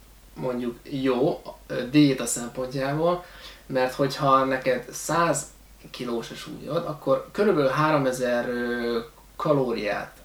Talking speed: 95 wpm